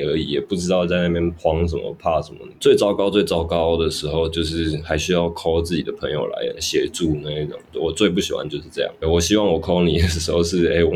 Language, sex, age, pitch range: Chinese, male, 20-39, 80-90 Hz